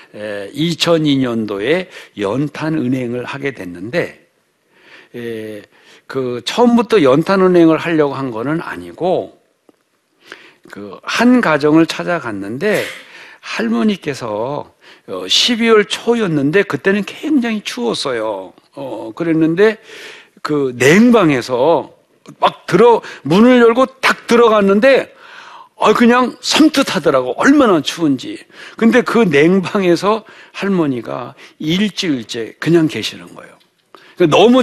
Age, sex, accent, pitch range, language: 60-79, male, native, 160-245 Hz, Korean